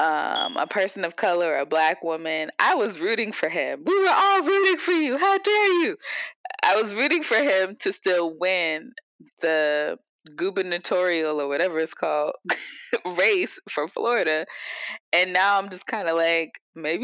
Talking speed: 165 wpm